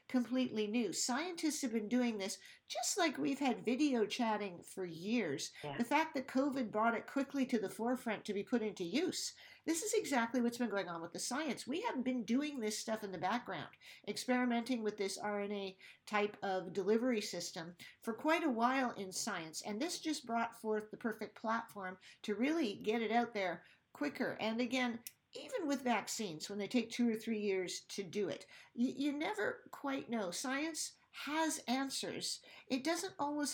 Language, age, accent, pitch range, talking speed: English, 50-69, American, 210-270 Hz, 185 wpm